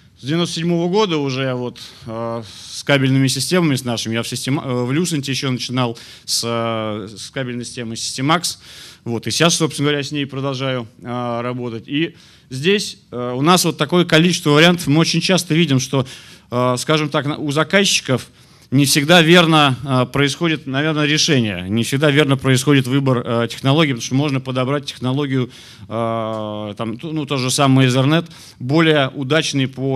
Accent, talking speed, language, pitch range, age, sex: native, 155 wpm, Russian, 125-155 Hz, 30-49, male